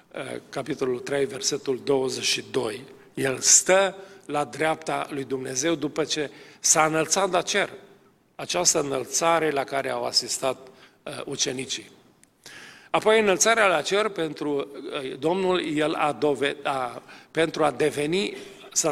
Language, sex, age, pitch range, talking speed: Romanian, male, 50-69, 140-175 Hz, 120 wpm